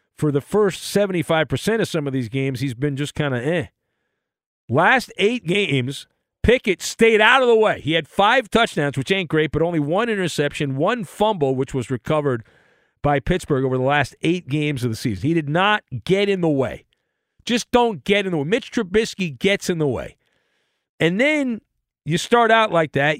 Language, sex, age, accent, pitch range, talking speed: English, male, 40-59, American, 145-205 Hz, 195 wpm